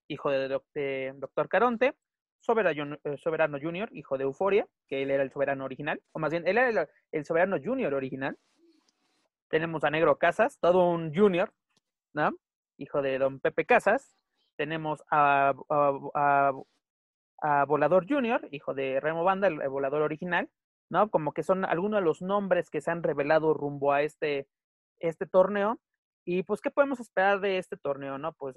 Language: Spanish